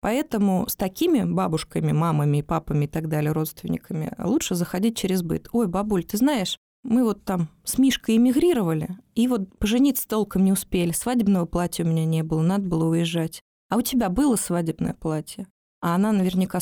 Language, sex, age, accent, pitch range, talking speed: Russian, female, 20-39, native, 170-235 Hz, 175 wpm